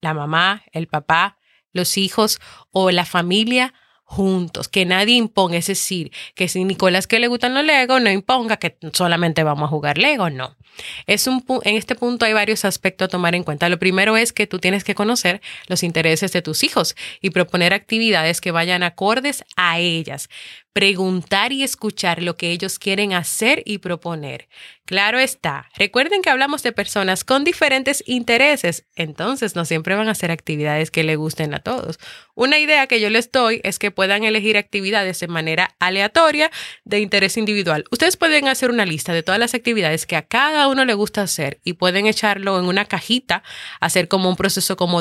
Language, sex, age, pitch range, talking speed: Spanish, female, 30-49, 175-240 Hz, 185 wpm